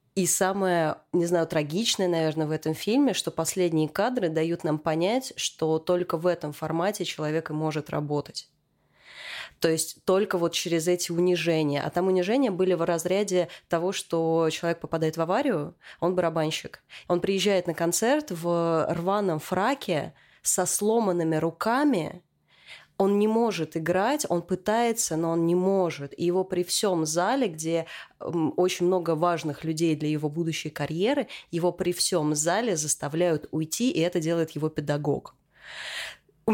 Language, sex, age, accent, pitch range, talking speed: Russian, female, 20-39, native, 160-190 Hz, 150 wpm